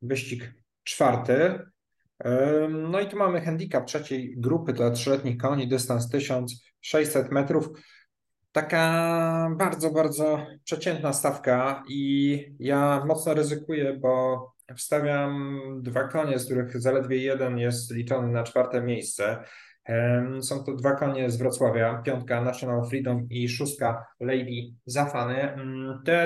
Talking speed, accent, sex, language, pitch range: 115 wpm, native, male, Polish, 120-145 Hz